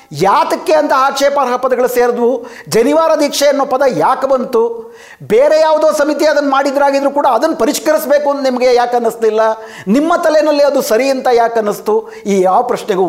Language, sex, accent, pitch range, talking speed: Kannada, male, native, 215-290 Hz, 150 wpm